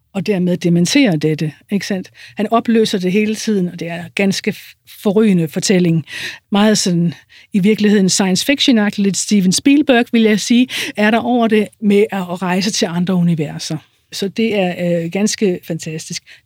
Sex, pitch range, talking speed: female, 180-230 Hz, 155 wpm